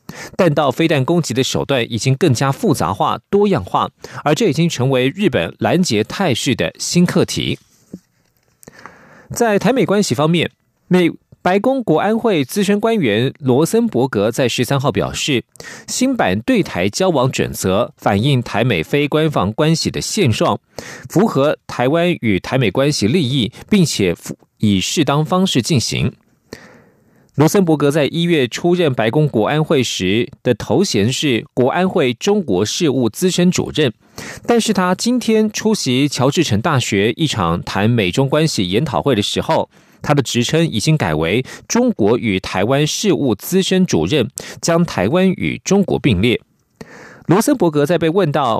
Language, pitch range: Chinese, 125-180 Hz